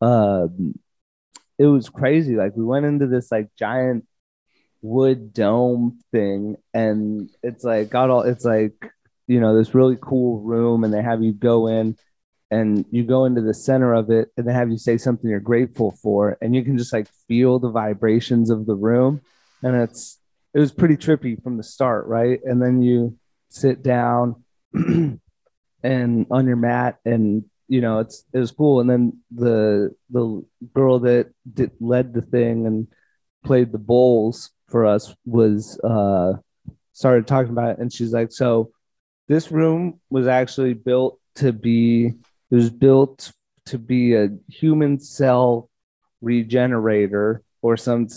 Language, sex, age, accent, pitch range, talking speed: English, male, 30-49, American, 115-130 Hz, 165 wpm